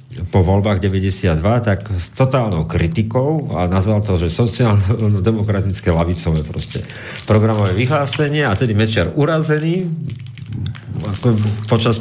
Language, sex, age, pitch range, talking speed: Slovak, male, 40-59, 100-120 Hz, 105 wpm